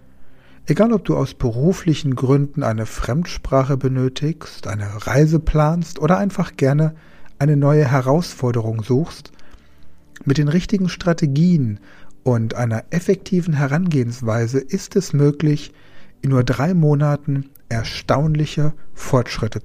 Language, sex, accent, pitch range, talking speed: German, male, German, 115-155 Hz, 110 wpm